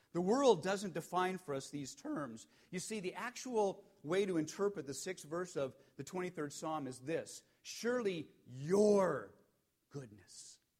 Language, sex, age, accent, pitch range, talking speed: English, male, 50-69, American, 115-185 Hz, 150 wpm